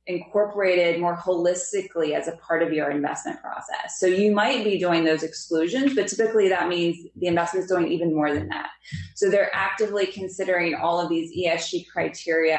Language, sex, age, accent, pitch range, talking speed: English, female, 20-39, American, 165-210 Hz, 180 wpm